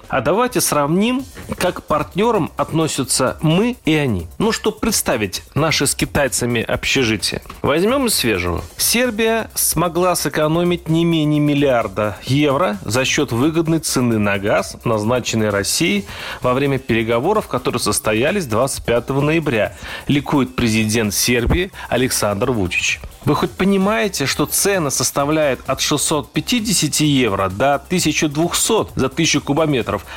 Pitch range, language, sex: 125-175 Hz, Russian, male